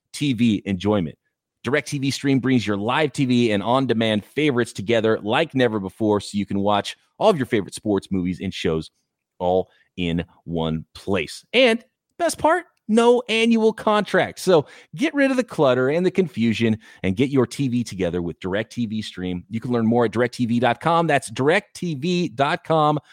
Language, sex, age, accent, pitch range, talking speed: English, male, 30-49, American, 115-170 Hz, 170 wpm